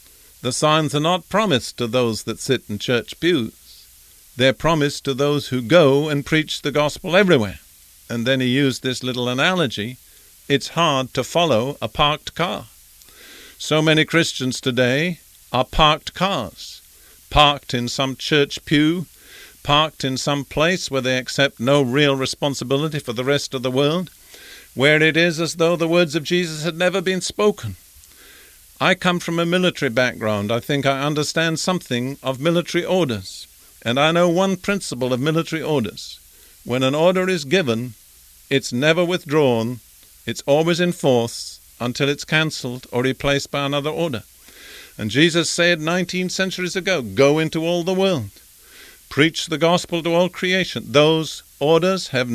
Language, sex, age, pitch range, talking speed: English, male, 50-69, 125-170 Hz, 160 wpm